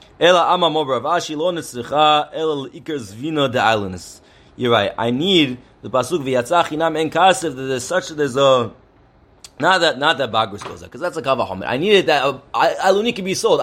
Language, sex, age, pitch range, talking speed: English, male, 30-49, 140-185 Hz, 145 wpm